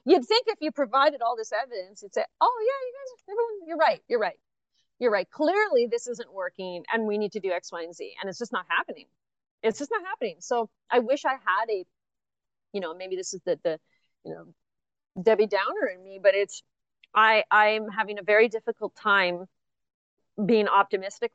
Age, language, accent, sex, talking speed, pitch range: 30-49, English, American, female, 205 wpm, 185-240 Hz